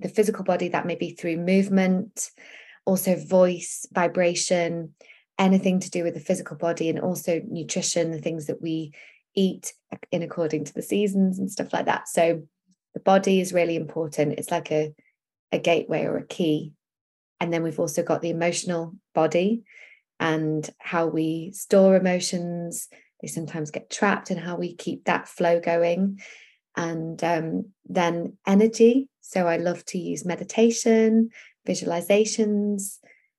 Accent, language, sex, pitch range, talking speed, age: British, English, female, 170-200 Hz, 150 wpm, 20-39